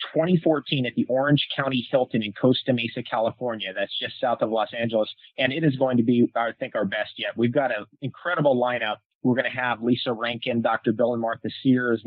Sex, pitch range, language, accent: male, 115-135 Hz, English, American